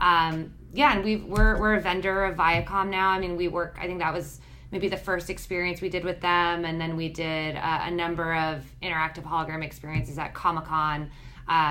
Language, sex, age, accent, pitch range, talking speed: English, female, 20-39, American, 150-185 Hz, 215 wpm